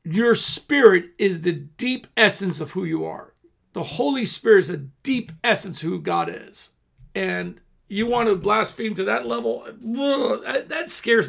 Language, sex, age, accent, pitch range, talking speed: English, male, 50-69, American, 140-225 Hz, 170 wpm